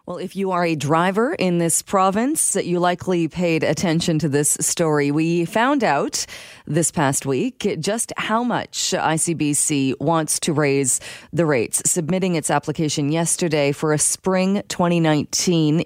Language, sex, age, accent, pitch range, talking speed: English, female, 30-49, American, 145-180 Hz, 150 wpm